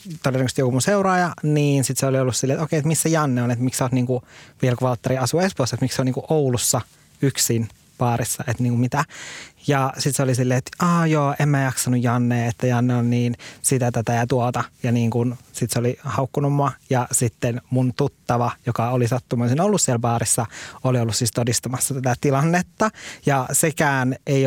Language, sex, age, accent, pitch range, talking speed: Finnish, male, 20-39, native, 125-145 Hz, 200 wpm